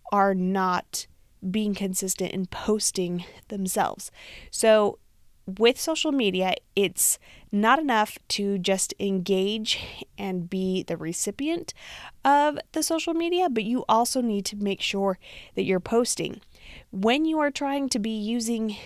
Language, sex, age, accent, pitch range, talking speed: English, female, 30-49, American, 195-235 Hz, 135 wpm